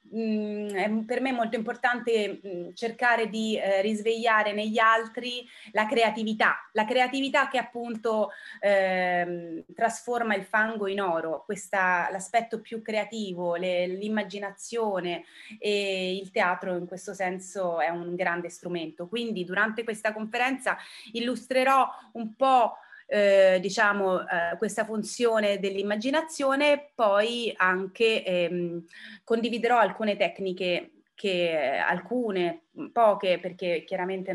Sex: female